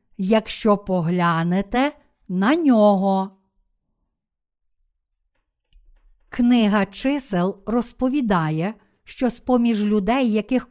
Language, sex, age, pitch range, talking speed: Ukrainian, female, 50-69, 205-255 Hz, 60 wpm